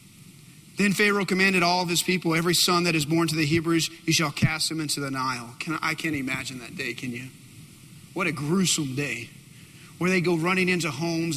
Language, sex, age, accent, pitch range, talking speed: English, male, 40-59, American, 145-200 Hz, 210 wpm